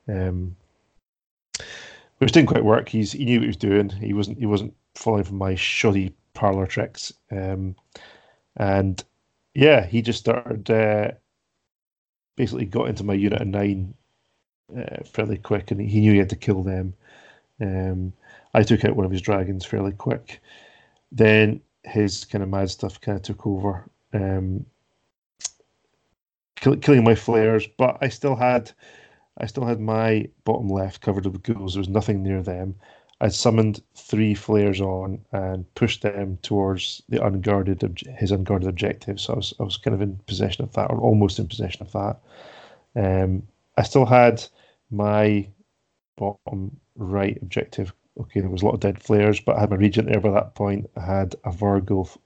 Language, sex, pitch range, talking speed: English, male, 95-110 Hz, 175 wpm